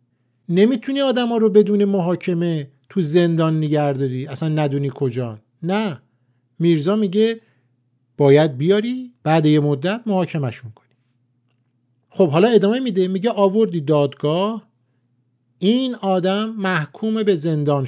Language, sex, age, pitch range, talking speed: Persian, male, 50-69, 125-180 Hz, 115 wpm